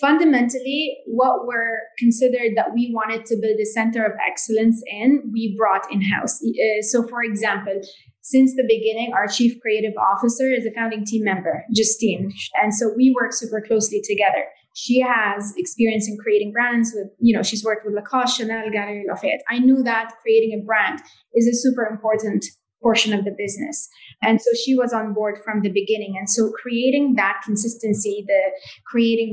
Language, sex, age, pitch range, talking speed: English, female, 20-39, 210-240 Hz, 180 wpm